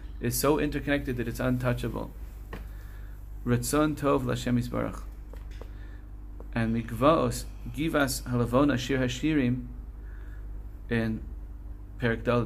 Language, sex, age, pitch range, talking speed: English, male, 30-49, 100-125 Hz, 90 wpm